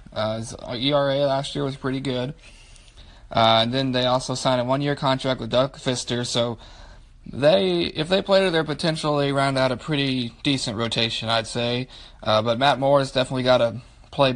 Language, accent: English, American